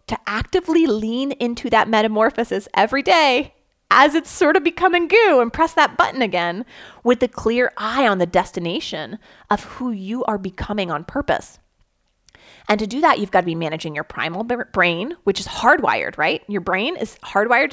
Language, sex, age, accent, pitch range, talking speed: English, female, 30-49, American, 185-255 Hz, 180 wpm